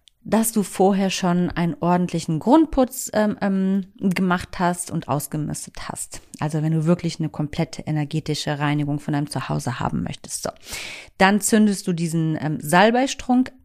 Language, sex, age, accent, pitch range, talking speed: German, female, 40-59, German, 165-195 Hz, 150 wpm